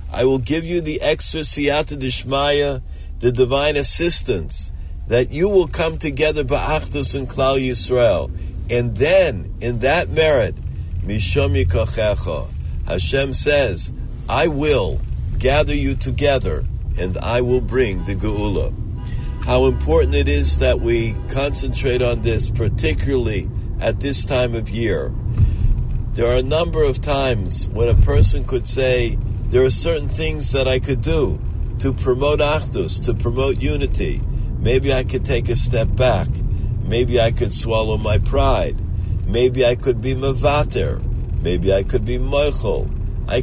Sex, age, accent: male, 50-69, American